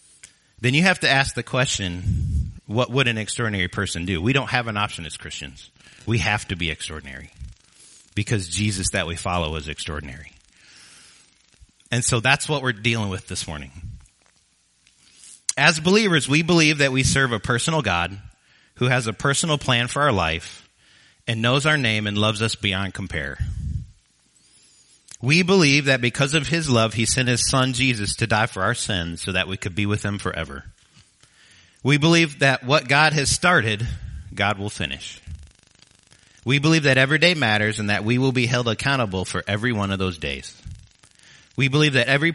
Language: English